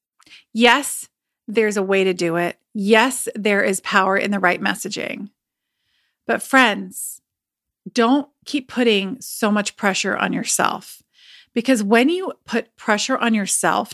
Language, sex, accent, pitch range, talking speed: English, female, American, 215-270 Hz, 140 wpm